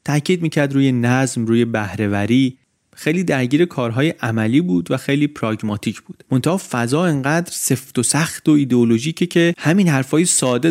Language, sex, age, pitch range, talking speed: Persian, male, 30-49, 115-150 Hz, 145 wpm